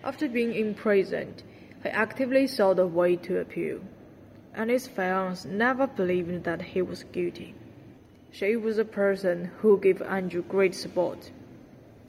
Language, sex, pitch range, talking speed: Malay, female, 180-225 Hz, 140 wpm